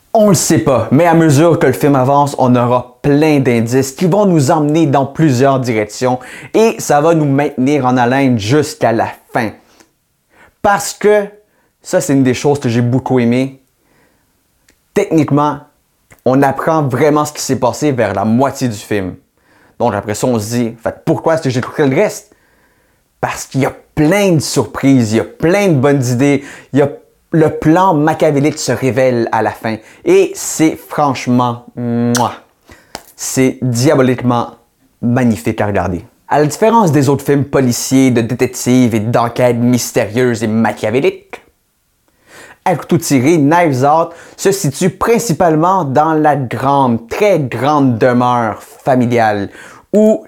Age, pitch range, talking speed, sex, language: 30-49, 125-160 Hz, 160 wpm, male, French